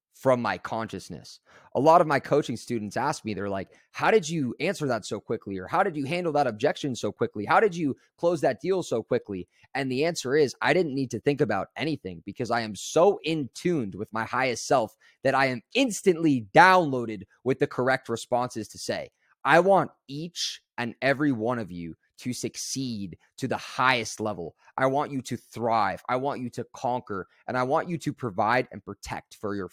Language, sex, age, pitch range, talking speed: English, male, 20-39, 115-165 Hz, 210 wpm